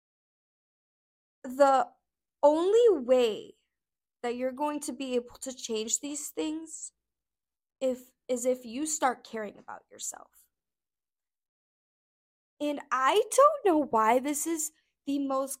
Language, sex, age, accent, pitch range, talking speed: English, female, 10-29, American, 255-320 Hz, 110 wpm